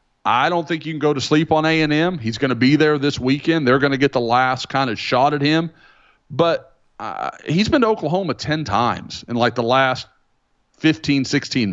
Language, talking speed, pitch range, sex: English, 215 wpm, 115-150 Hz, male